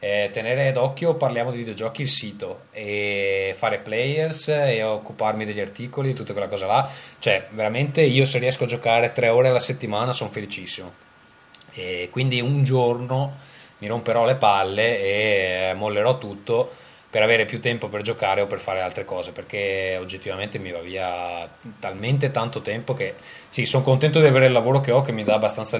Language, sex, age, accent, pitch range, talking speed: Italian, male, 20-39, native, 100-130 Hz, 175 wpm